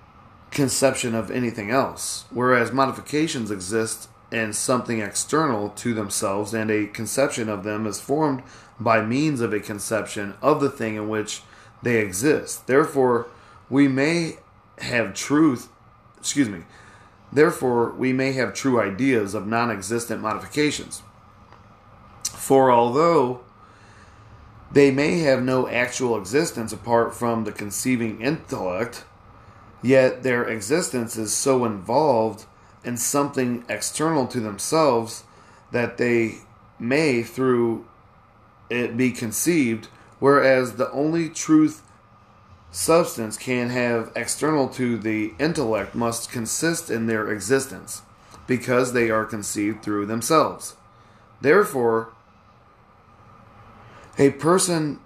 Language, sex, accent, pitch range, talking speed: English, male, American, 105-130 Hz, 110 wpm